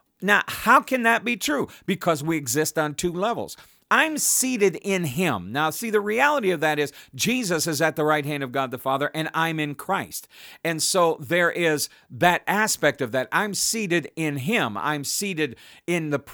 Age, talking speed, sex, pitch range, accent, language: 50-69, 190 wpm, male, 150-190 Hz, American, English